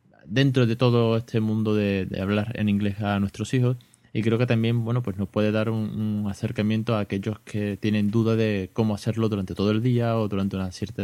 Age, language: 20-39, Spanish